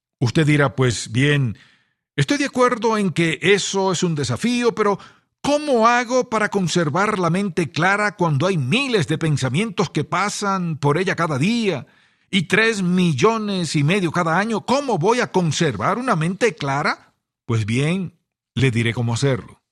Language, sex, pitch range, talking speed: English, male, 130-185 Hz, 160 wpm